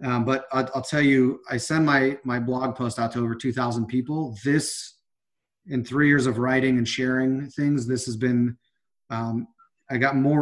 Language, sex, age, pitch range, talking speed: English, male, 30-49, 120-145 Hz, 185 wpm